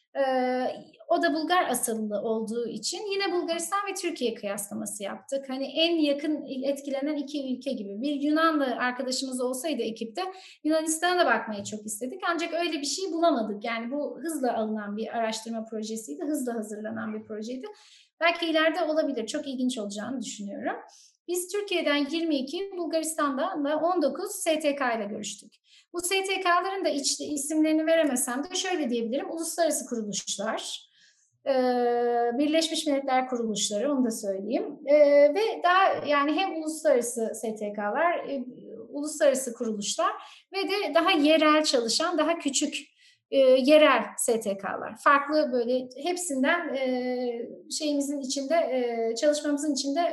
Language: Turkish